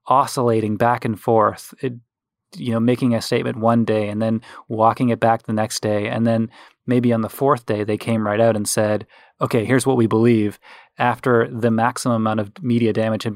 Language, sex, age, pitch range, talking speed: English, male, 20-39, 110-130 Hz, 200 wpm